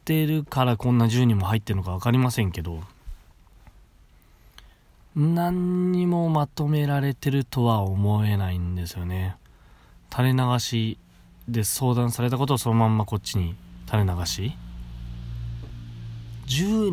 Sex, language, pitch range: male, Japanese, 90-125 Hz